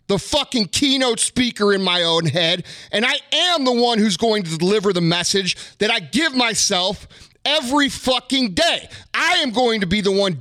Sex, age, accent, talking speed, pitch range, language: male, 30-49, American, 190 wpm, 175-250 Hz, English